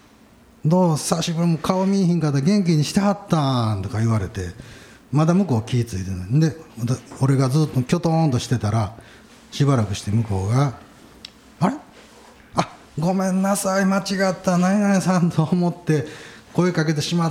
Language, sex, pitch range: Japanese, male, 110-175 Hz